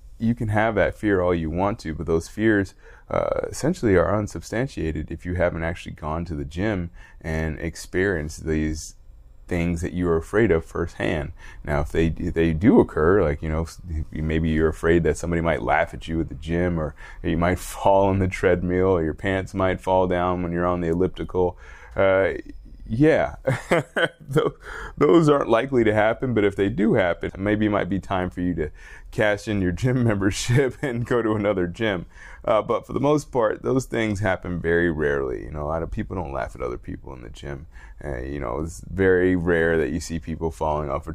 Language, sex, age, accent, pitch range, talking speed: English, male, 20-39, American, 80-100 Hz, 205 wpm